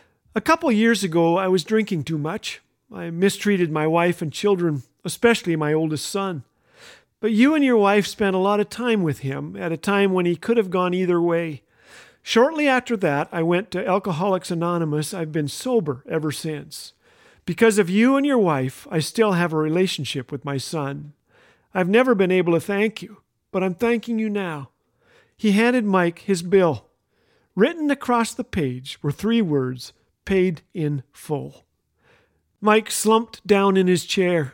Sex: male